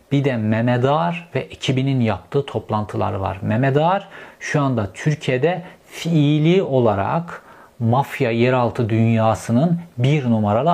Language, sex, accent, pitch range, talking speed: Turkish, male, native, 115-150 Hz, 105 wpm